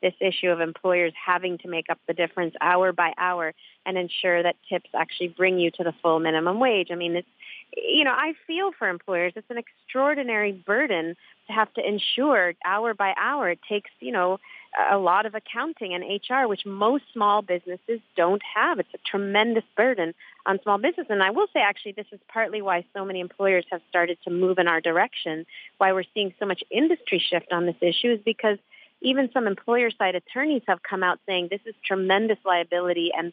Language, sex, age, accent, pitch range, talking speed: English, female, 30-49, American, 175-230 Hz, 200 wpm